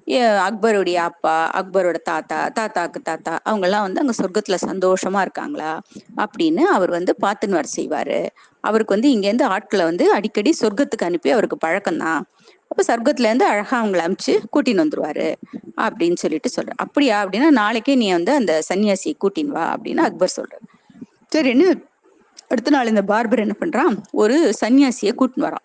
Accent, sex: native, female